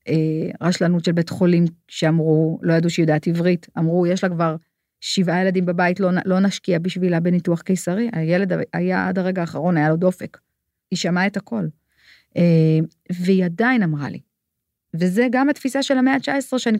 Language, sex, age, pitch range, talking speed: Hebrew, female, 40-59, 175-225 Hz, 165 wpm